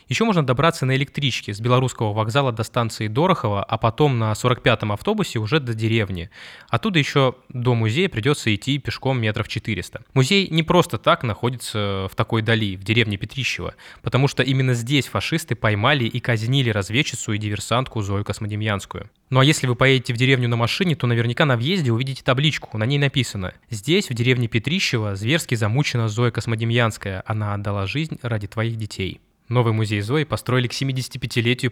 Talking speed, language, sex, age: 170 wpm, Russian, male, 20-39